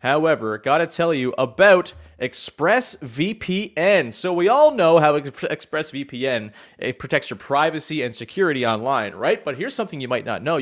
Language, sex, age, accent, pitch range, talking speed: English, male, 30-49, American, 155-220 Hz, 155 wpm